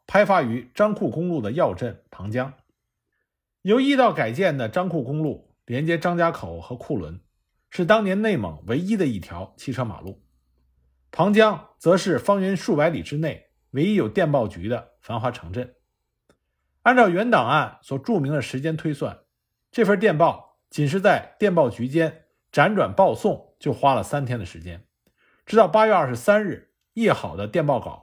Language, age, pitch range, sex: Chinese, 50-69, 115-195 Hz, male